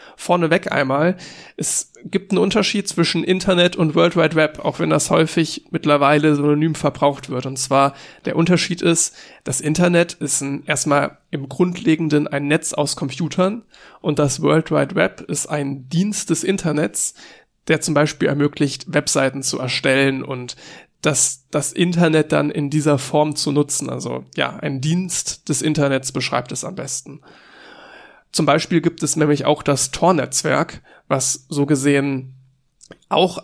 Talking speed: 155 wpm